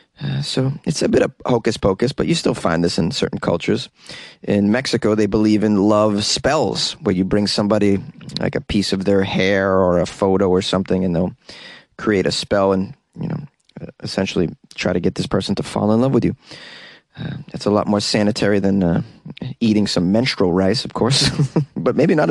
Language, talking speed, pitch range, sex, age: English, 200 wpm, 105-140 Hz, male, 20-39